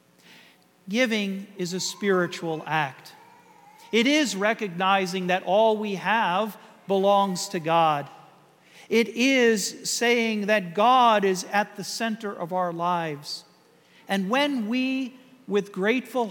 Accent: American